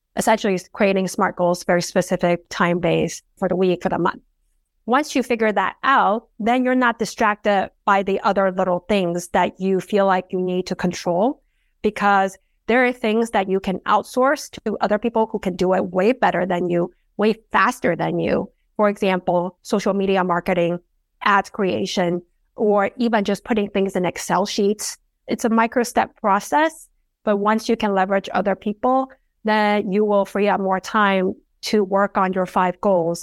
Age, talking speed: 30-49, 175 wpm